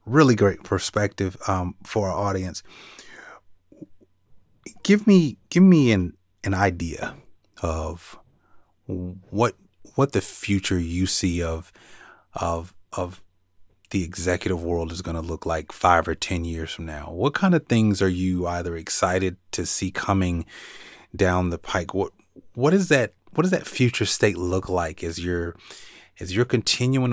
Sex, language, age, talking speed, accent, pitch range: male, English, 30-49, 150 wpm, American, 85-100 Hz